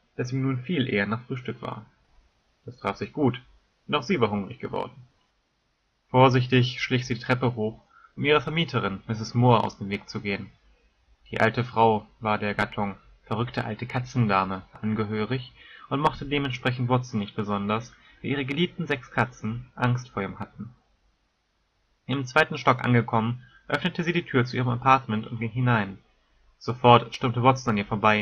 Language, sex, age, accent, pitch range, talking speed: German, male, 30-49, German, 110-135 Hz, 170 wpm